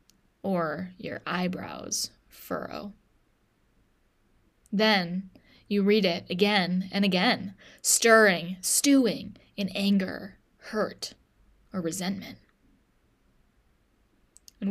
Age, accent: 10-29, American